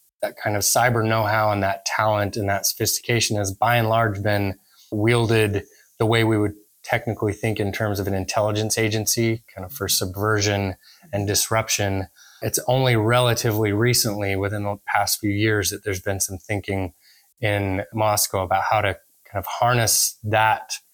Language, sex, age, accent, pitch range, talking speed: English, male, 20-39, American, 100-115 Hz, 165 wpm